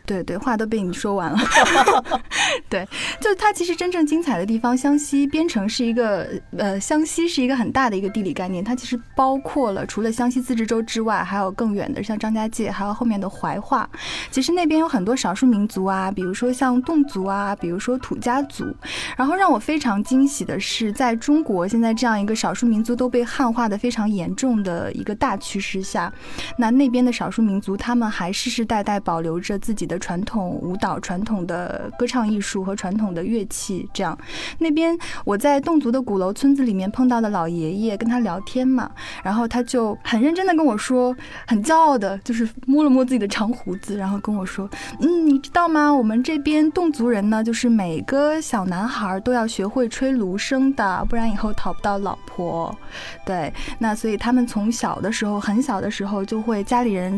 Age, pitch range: 20-39, 200-255 Hz